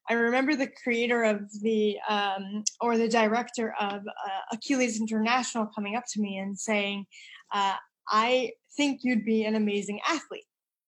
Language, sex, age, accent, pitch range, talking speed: English, female, 20-39, American, 210-255 Hz, 155 wpm